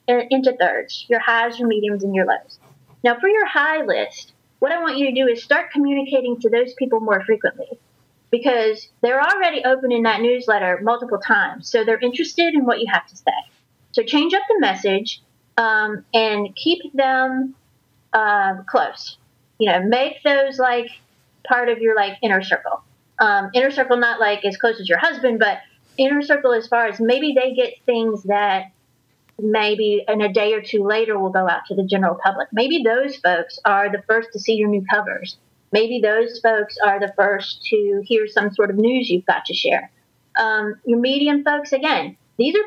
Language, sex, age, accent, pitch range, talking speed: English, female, 30-49, American, 210-275 Hz, 195 wpm